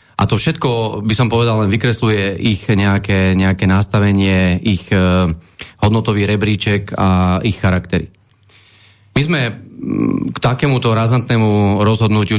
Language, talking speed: Slovak, 120 wpm